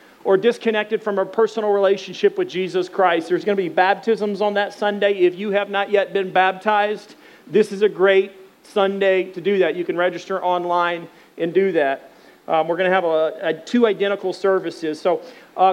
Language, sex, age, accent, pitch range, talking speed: English, male, 40-59, American, 175-200 Hz, 185 wpm